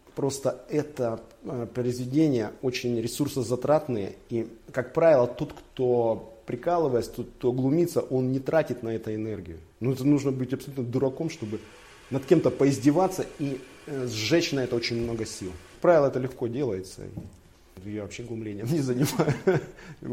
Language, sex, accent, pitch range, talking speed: Russian, male, native, 110-145 Hz, 135 wpm